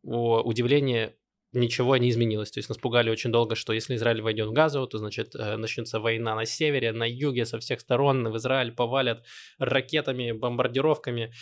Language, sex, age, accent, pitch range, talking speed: Russian, male, 20-39, native, 115-140 Hz, 170 wpm